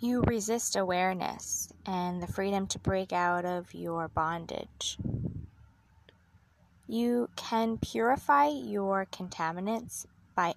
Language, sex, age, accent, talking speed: English, female, 20-39, American, 100 wpm